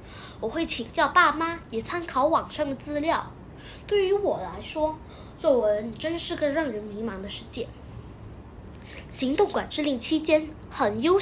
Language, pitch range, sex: Chinese, 250-345 Hz, female